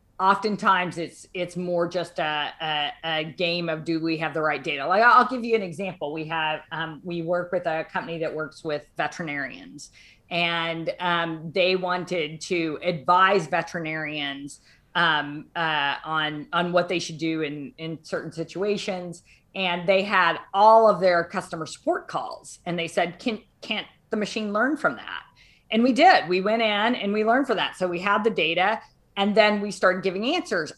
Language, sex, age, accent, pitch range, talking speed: English, female, 40-59, American, 165-210 Hz, 185 wpm